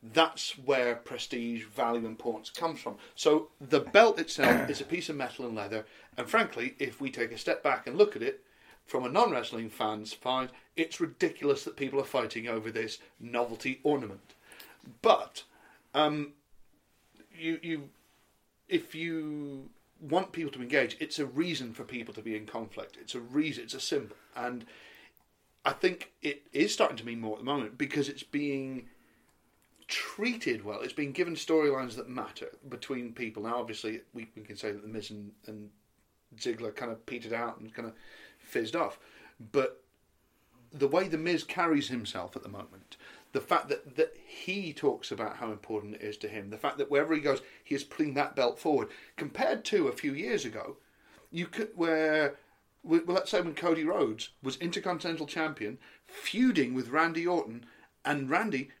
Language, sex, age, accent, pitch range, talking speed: English, male, 40-59, British, 115-165 Hz, 180 wpm